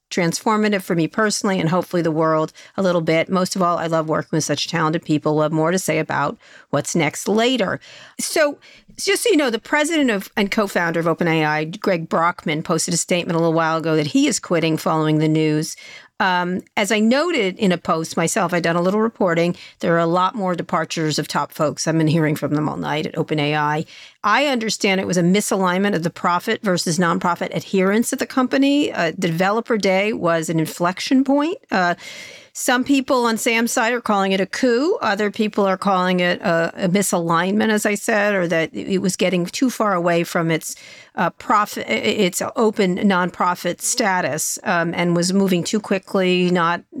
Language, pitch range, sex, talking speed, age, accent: English, 165-210 Hz, female, 200 wpm, 50-69, American